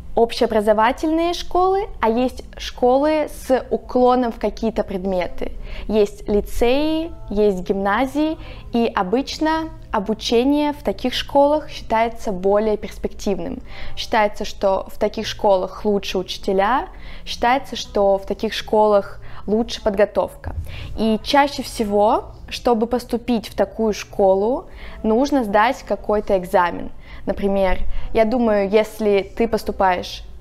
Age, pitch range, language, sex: 20-39, 195-235 Hz, Russian, female